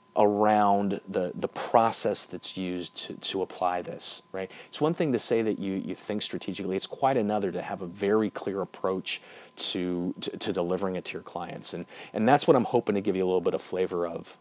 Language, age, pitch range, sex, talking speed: English, 30-49, 95-110 Hz, male, 220 wpm